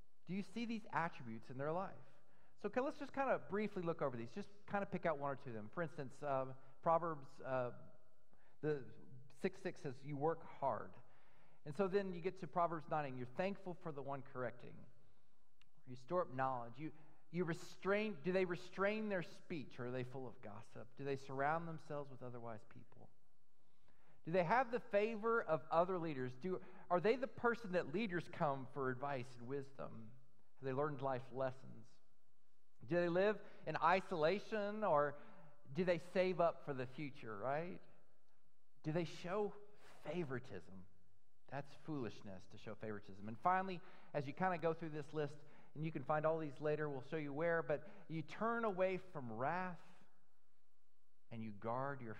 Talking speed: 180 wpm